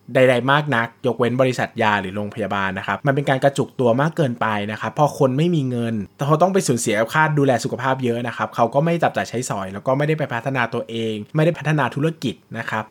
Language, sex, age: Thai, male, 20-39